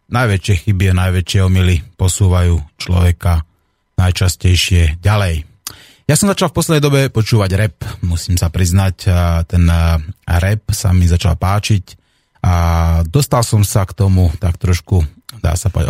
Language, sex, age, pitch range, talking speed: Slovak, male, 30-49, 85-105 Hz, 135 wpm